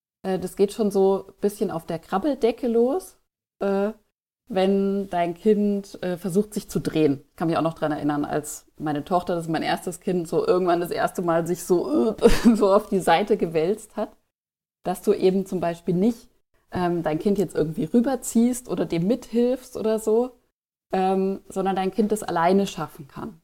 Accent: German